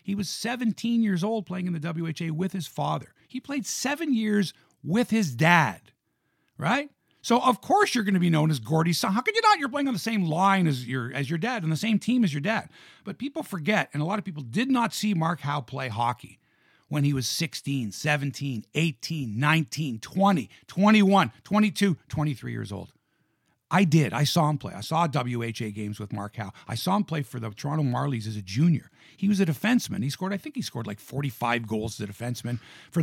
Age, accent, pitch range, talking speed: 50-69, American, 140-200 Hz, 220 wpm